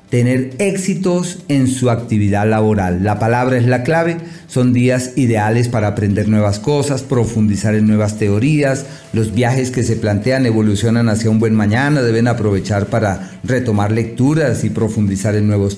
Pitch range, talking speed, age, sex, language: 110-140 Hz, 155 wpm, 50-69, male, Spanish